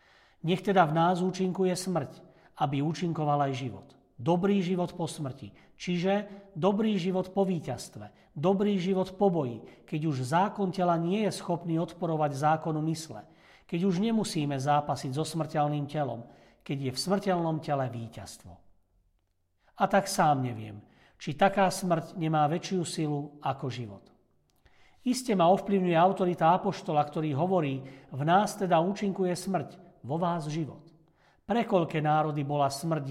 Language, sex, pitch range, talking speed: Slovak, male, 140-185 Hz, 140 wpm